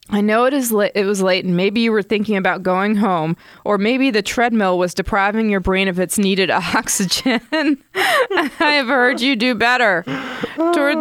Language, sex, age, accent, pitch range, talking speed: English, female, 20-39, American, 175-220 Hz, 190 wpm